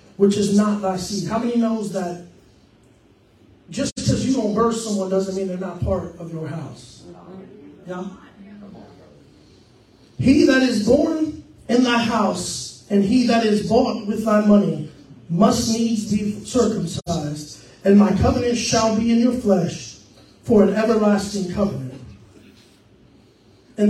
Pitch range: 190-230 Hz